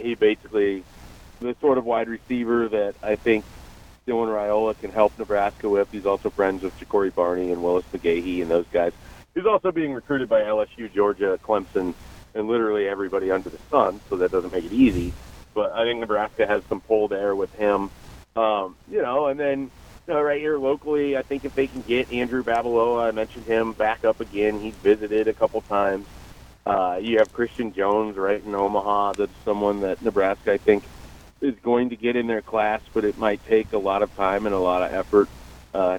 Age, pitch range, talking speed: 40-59, 100-120 Hz, 200 wpm